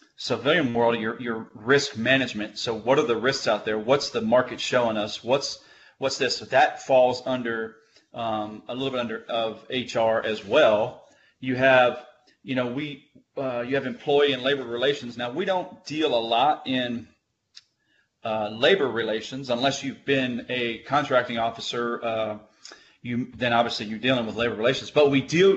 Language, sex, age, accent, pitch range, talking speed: English, male, 40-59, American, 110-130 Hz, 175 wpm